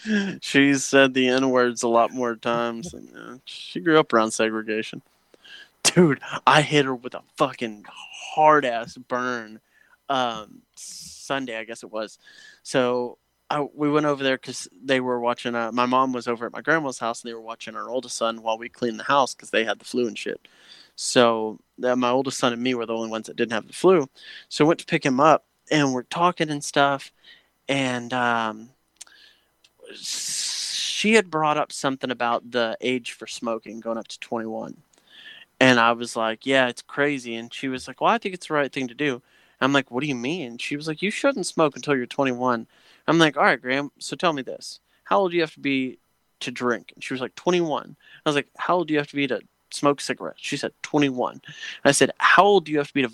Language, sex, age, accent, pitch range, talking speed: English, male, 20-39, American, 120-145 Hz, 220 wpm